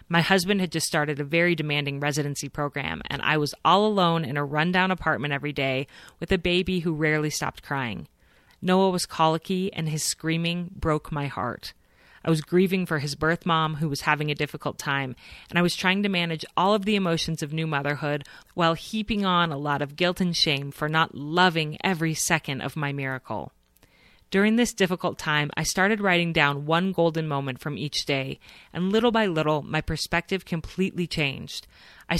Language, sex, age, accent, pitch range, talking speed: English, female, 30-49, American, 145-180 Hz, 190 wpm